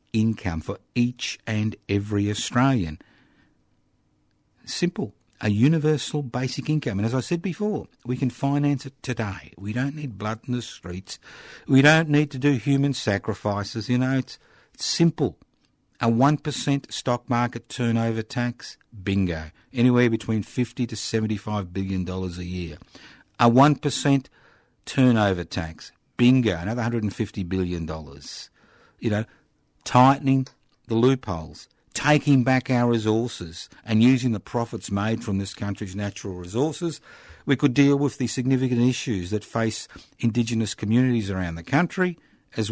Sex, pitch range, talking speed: male, 95-130 Hz, 135 wpm